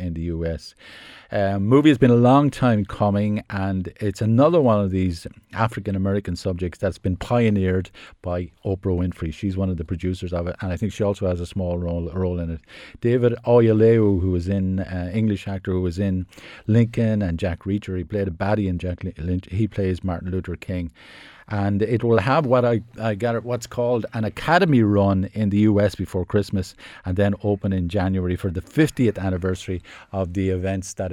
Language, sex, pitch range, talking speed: English, male, 90-110 Hz, 200 wpm